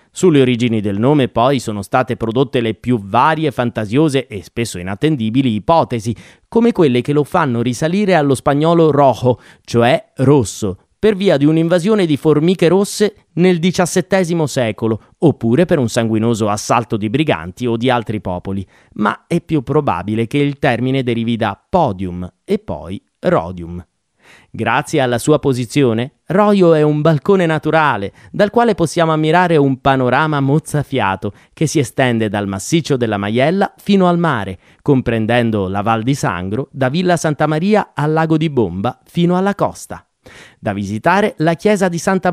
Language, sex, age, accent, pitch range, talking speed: Italian, male, 30-49, native, 115-165 Hz, 155 wpm